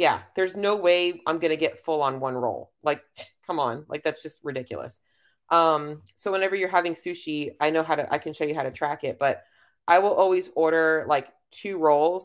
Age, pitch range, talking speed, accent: 30-49, 140-170 Hz, 220 wpm, American